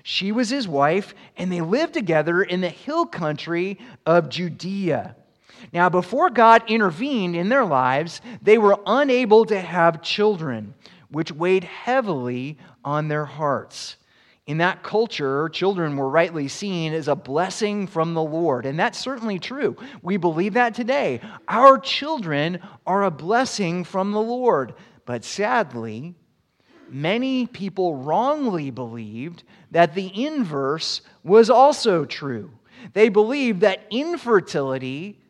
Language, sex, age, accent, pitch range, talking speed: English, male, 30-49, American, 155-220 Hz, 135 wpm